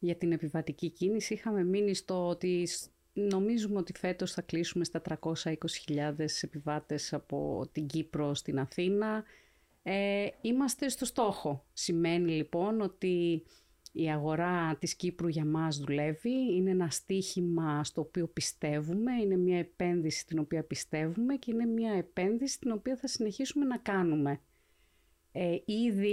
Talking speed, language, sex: 130 wpm, Greek, female